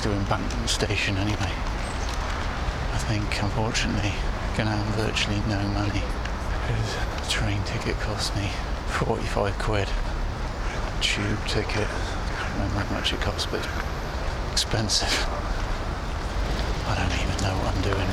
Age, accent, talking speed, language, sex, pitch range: 30-49, British, 130 wpm, English, male, 85-110 Hz